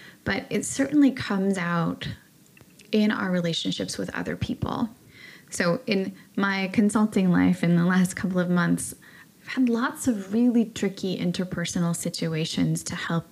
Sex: female